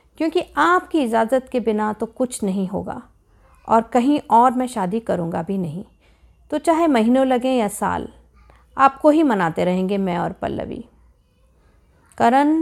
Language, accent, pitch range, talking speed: Hindi, native, 200-275 Hz, 145 wpm